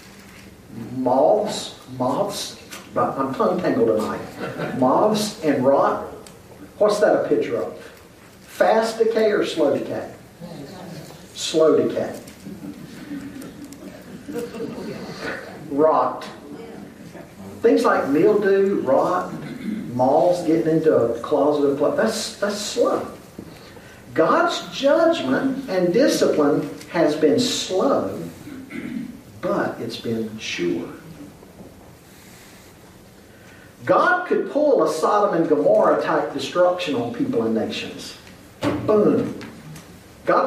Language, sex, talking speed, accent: English, male, 90 wpm, American